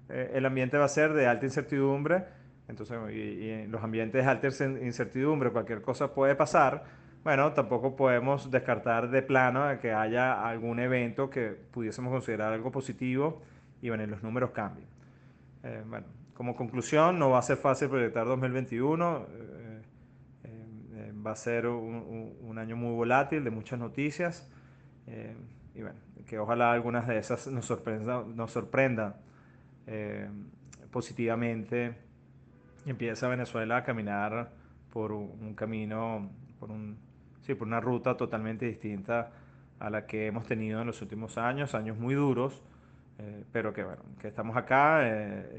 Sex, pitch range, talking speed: male, 115-135 Hz, 150 wpm